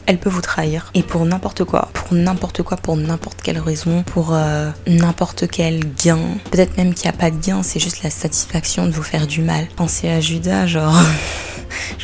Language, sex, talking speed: French, female, 210 wpm